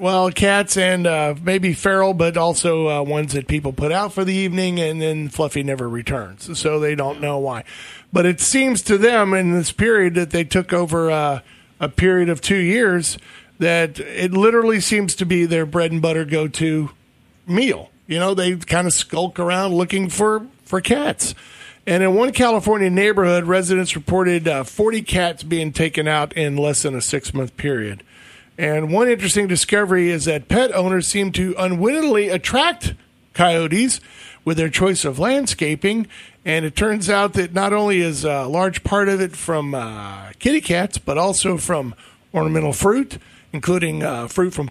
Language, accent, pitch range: English, American, 155-195 Hz